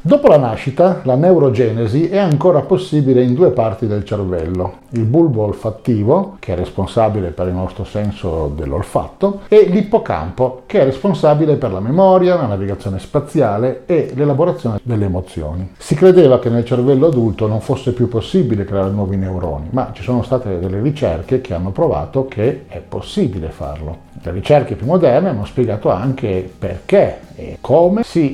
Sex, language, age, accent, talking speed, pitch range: male, Italian, 50-69, native, 160 wpm, 95-130 Hz